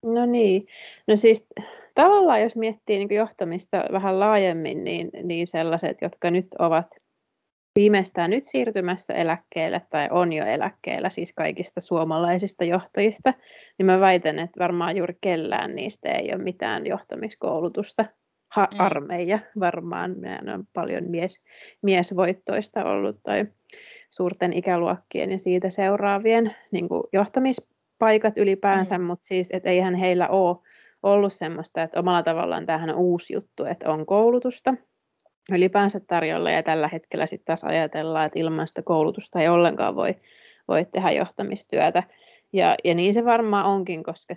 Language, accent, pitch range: Finnish, native, 165-200 Hz